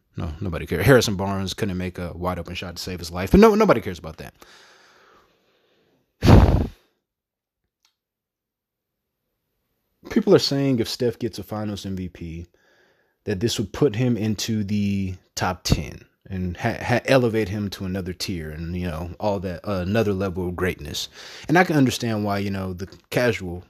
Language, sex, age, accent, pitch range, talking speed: English, male, 20-39, American, 95-125 Hz, 165 wpm